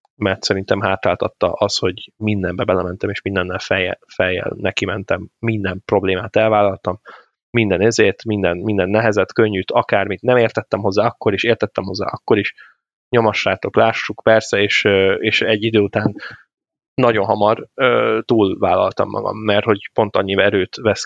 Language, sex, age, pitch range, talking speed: Hungarian, male, 20-39, 95-110 Hz, 140 wpm